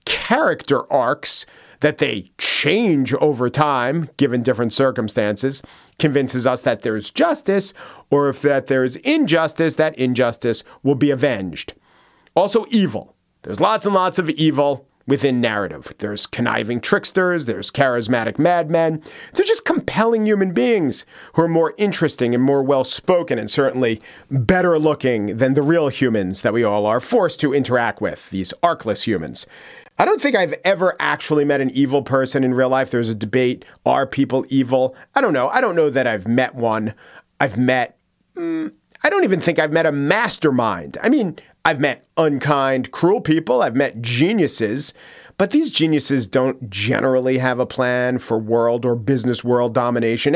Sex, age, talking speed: male, 40-59, 160 wpm